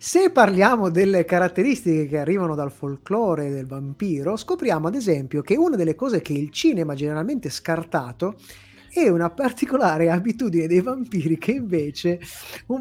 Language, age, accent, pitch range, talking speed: Italian, 30-49, native, 150-215 Hz, 150 wpm